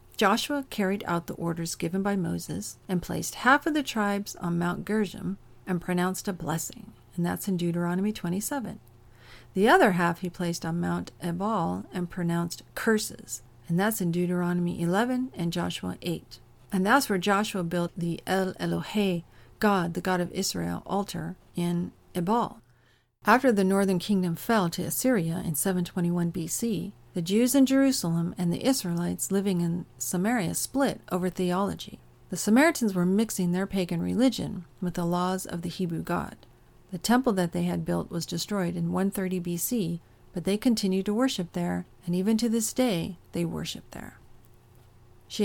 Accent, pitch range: American, 170-205 Hz